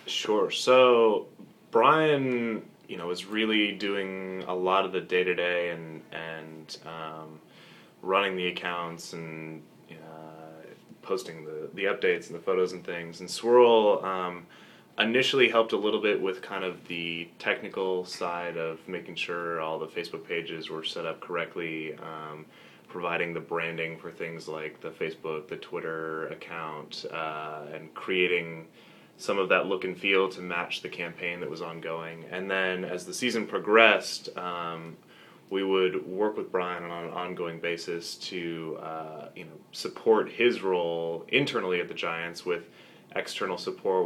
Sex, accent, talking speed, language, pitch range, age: male, American, 155 wpm, English, 80-100 Hz, 20-39